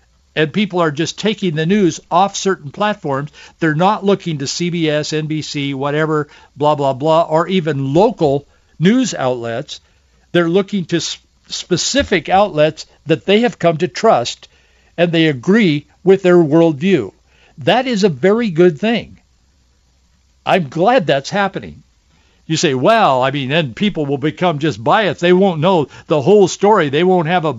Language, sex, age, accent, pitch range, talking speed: English, male, 60-79, American, 135-190 Hz, 160 wpm